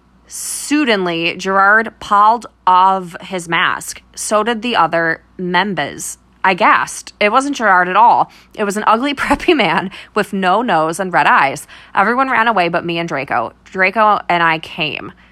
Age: 20-39